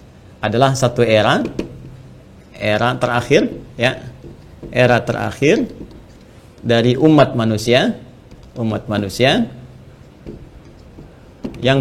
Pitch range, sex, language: 100-125 Hz, male, Indonesian